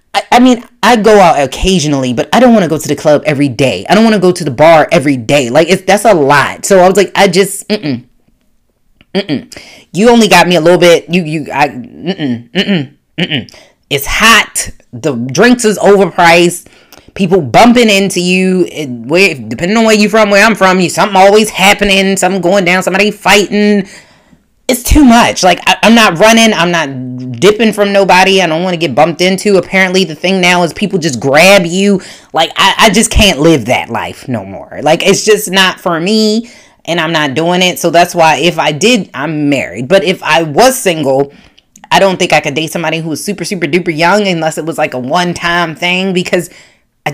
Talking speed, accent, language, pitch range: 210 wpm, American, English, 160-200 Hz